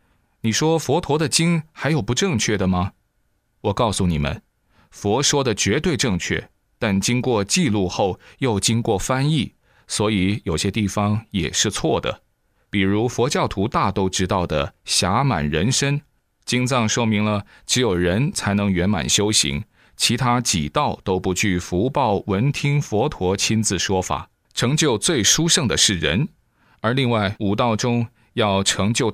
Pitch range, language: 95-125 Hz, Chinese